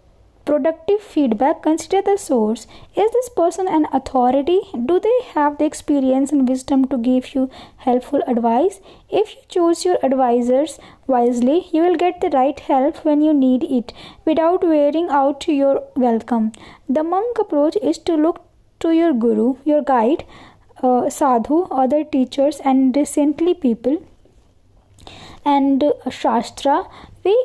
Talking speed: 140 wpm